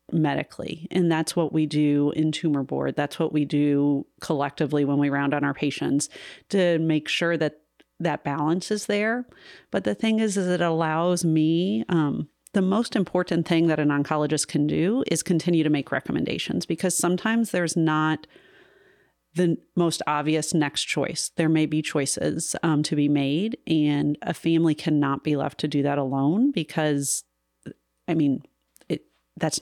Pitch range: 150-170 Hz